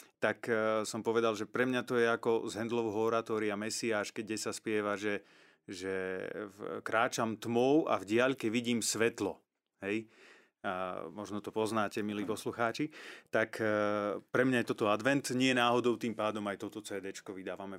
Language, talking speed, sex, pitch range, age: Slovak, 160 wpm, male, 100-120 Hz, 30-49